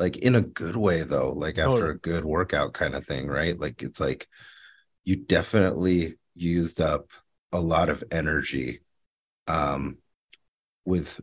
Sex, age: male, 30-49